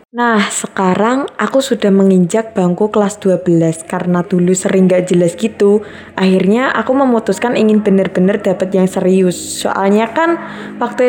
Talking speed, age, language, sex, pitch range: 135 wpm, 20-39, Indonesian, female, 185-225 Hz